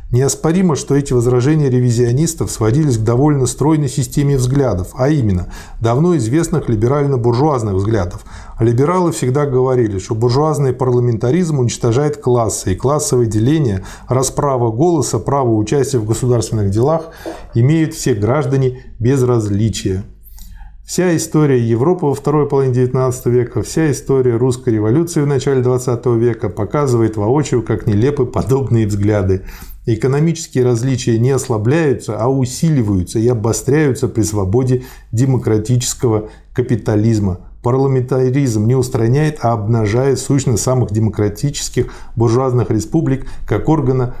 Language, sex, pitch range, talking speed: Russian, male, 115-140 Hz, 120 wpm